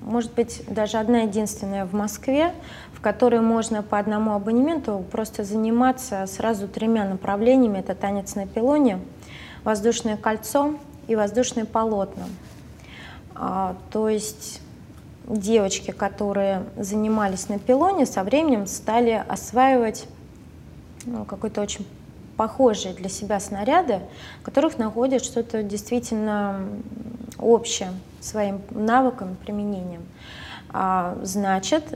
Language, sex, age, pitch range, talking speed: Russian, female, 20-39, 195-235 Hz, 105 wpm